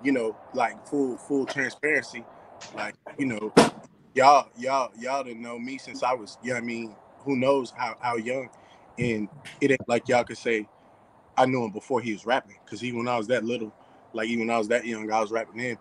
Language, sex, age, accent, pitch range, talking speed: English, male, 20-39, American, 110-125 Hz, 230 wpm